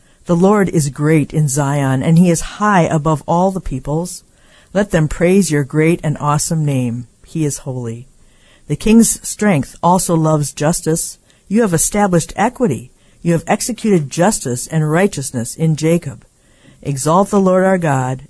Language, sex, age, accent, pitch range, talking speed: English, female, 50-69, American, 135-175 Hz, 155 wpm